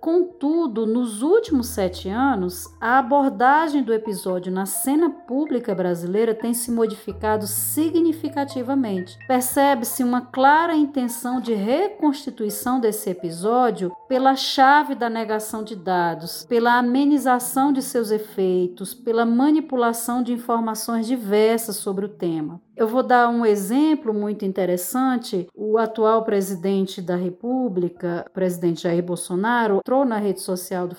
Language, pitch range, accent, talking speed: Portuguese, 200-265 Hz, Brazilian, 125 wpm